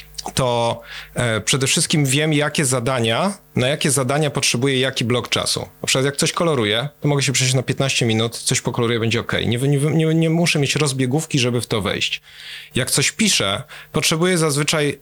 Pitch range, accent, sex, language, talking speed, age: 120-155 Hz, native, male, Polish, 185 wpm, 40-59